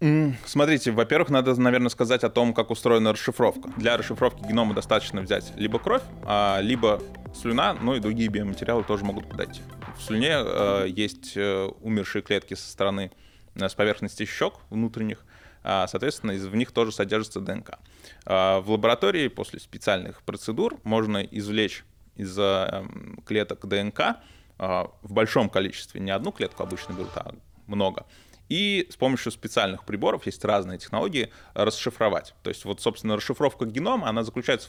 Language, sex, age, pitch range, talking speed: Russian, male, 20-39, 100-115 Hz, 140 wpm